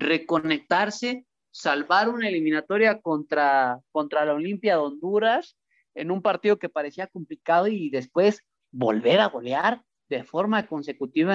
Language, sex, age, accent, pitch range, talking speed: Spanish, male, 30-49, Mexican, 150-190 Hz, 125 wpm